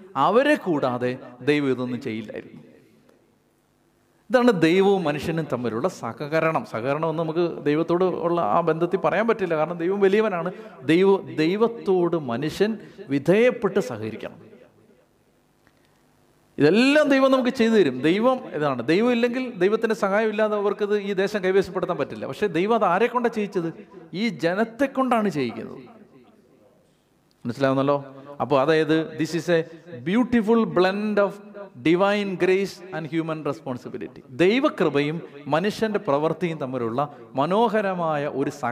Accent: native